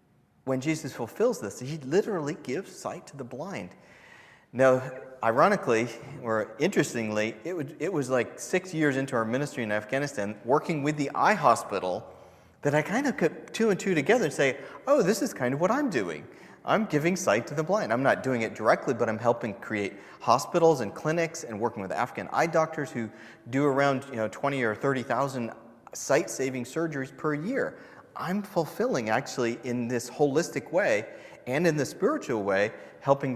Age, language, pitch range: 30-49, English, 120-160 Hz